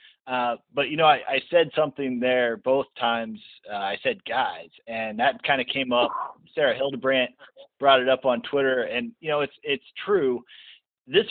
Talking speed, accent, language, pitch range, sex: 185 wpm, American, English, 120-140 Hz, male